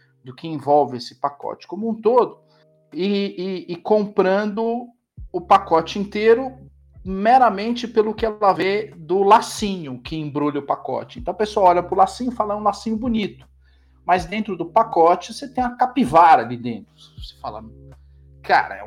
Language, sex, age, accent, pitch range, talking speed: Portuguese, male, 40-59, Brazilian, 125-205 Hz, 165 wpm